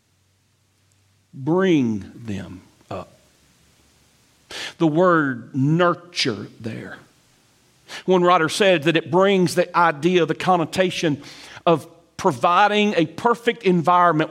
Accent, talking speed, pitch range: American, 90 wpm, 155-220 Hz